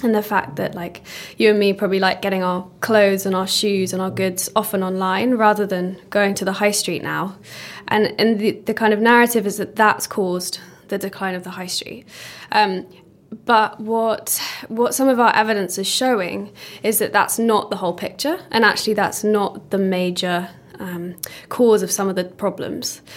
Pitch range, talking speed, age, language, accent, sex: 185-220 Hz, 195 wpm, 10-29, Swedish, British, female